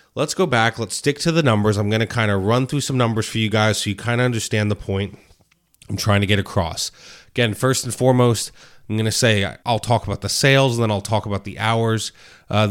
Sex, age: male, 30-49